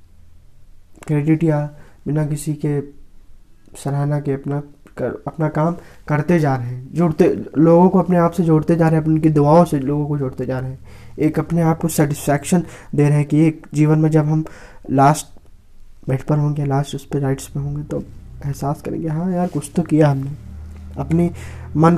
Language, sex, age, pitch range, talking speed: Hindi, male, 20-39, 125-160 Hz, 190 wpm